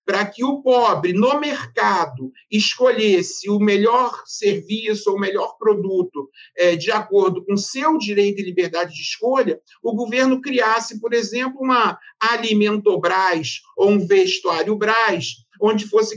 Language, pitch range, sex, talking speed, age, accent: Portuguese, 200-255 Hz, male, 135 wpm, 50-69, Brazilian